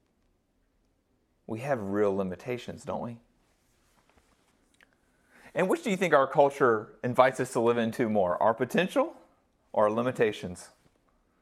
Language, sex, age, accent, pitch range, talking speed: English, male, 30-49, American, 100-135 Hz, 125 wpm